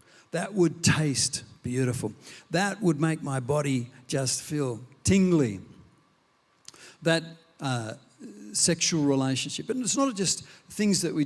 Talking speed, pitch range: 125 wpm, 130-155 Hz